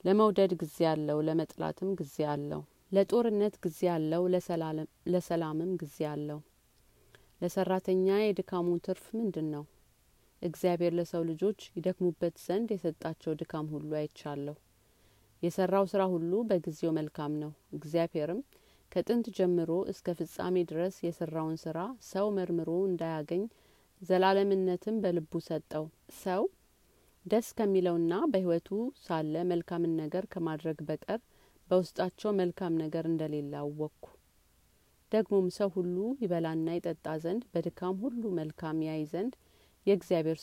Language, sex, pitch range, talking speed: Amharic, female, 155-190 Hz, 105 wpm